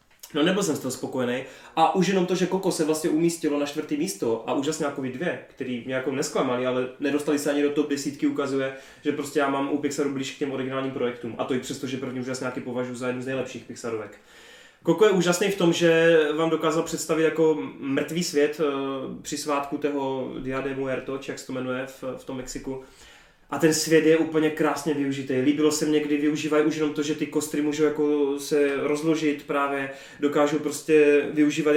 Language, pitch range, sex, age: Czech, 140-160 Hz, male, 20-39